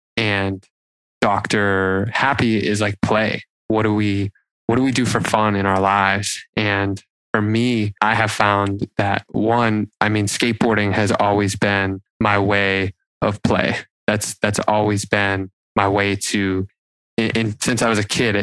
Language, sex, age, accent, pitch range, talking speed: English, male, 20-39, American, 100-115 Hz, 160 wpm